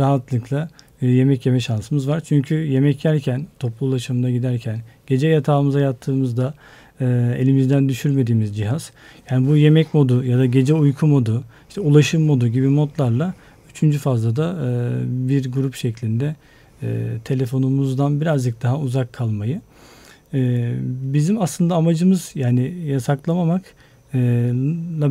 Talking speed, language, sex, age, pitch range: 110 wpm, Turkish, male, 40-59, 130-155 Hz